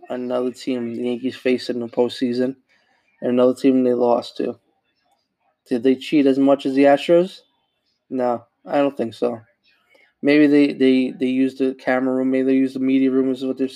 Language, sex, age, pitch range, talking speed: English, male, 20-39, 125-140 Hz, 190 wpm